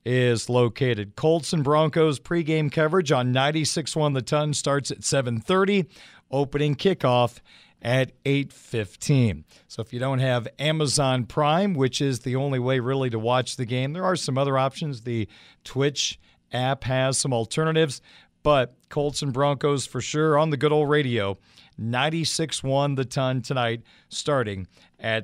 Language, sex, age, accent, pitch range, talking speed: English, male, 50-69, American, 125-150 Hz, 150 wpm